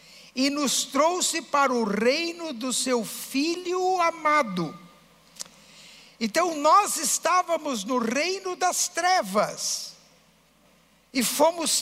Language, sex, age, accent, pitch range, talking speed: Portuguese, male, 60-79, Brazilian, 215-315 Hz, 95 wpm